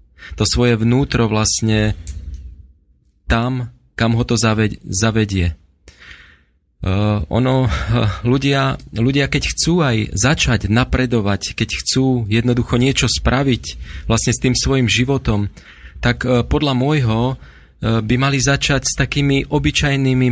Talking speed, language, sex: 120 wpm, Slovak, male